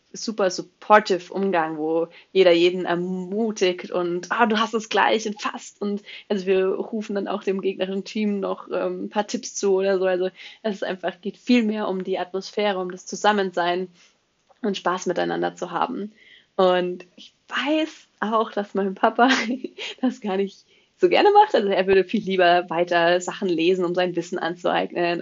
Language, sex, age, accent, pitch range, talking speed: German, female, 20-39, German, 175-205 Hz, 180 wpm